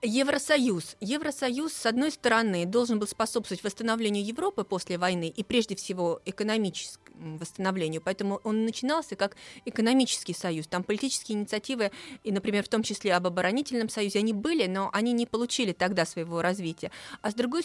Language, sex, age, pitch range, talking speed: Russian, female, 30-49, 190-250 Hz, 155 wpm